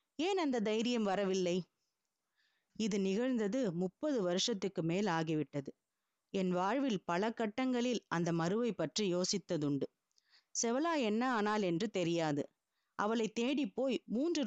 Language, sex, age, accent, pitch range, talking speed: Tamil, female, 20-39, native, 180-245 Hz, 110 wpm